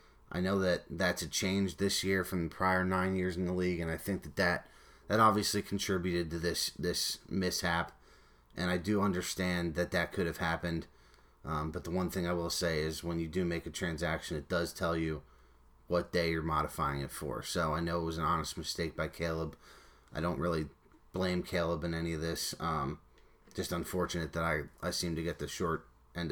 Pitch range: 80-90 Hz